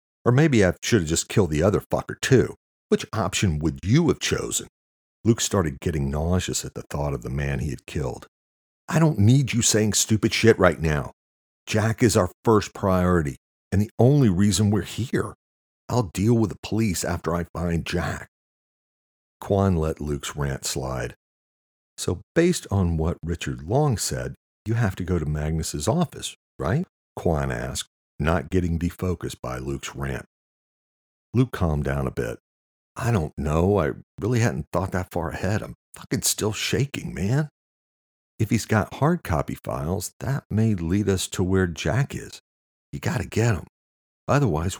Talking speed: 170 wpm